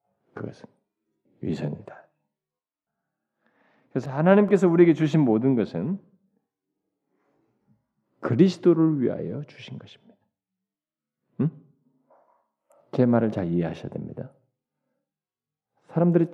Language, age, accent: Korean, 40-59, native